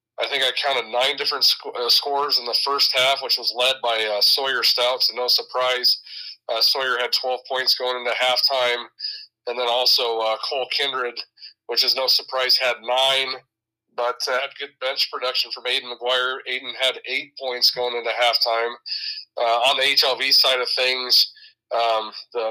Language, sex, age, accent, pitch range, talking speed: English, male, 30-49, American, 120-130 Hz, 185 wpm